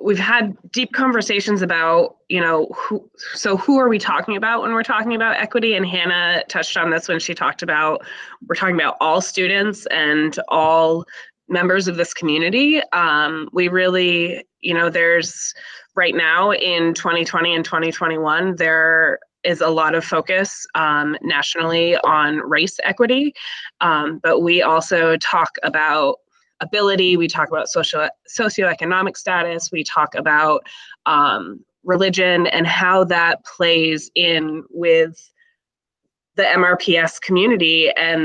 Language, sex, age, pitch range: English, female, 20-39, 165-195 Hz